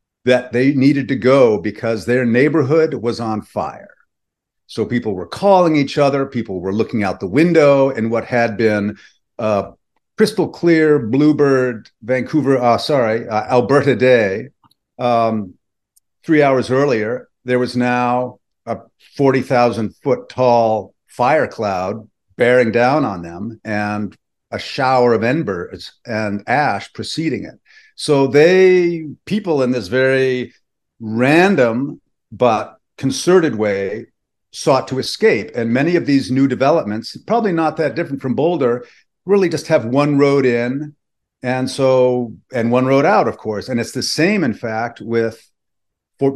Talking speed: 145 wpm